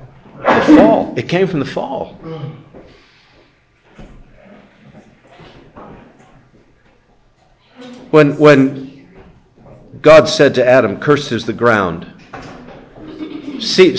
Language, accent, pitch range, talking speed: English, American, 115-160 Hz, 75 wpm